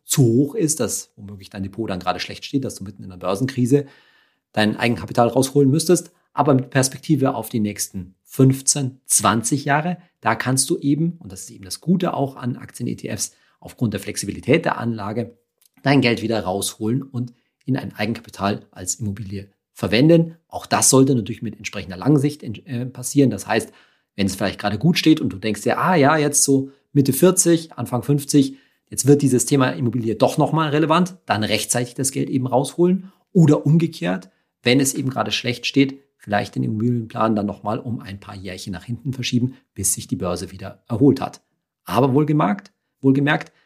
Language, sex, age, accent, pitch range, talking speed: German, male, 40-59, German, 105-145 Hz, 180 wpm